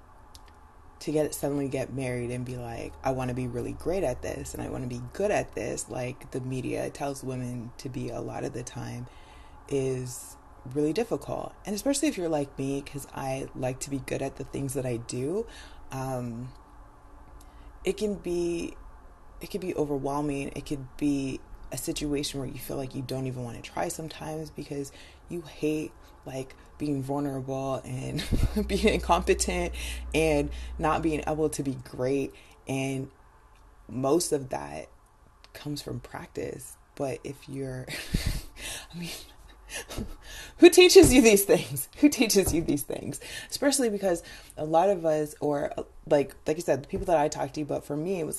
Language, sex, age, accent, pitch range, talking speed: English, female, 20-39, American, 130-155 Hz, 175 wpm